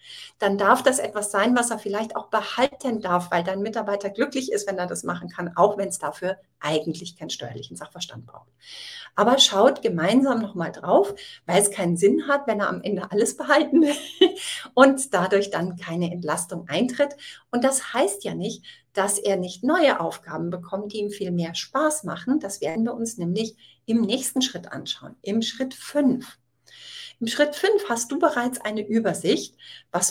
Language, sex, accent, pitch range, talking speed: German, female, German, 180-265 Hz, 180 wpm